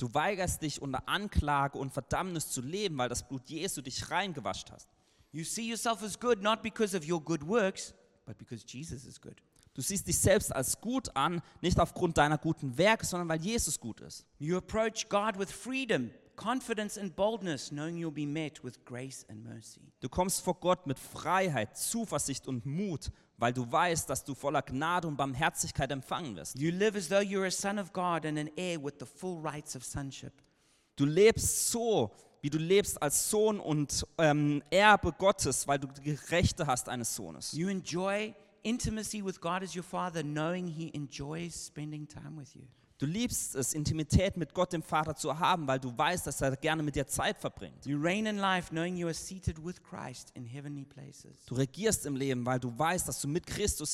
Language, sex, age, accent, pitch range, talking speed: German, male, 30-49, German, 140-190 Hz, 140 wpm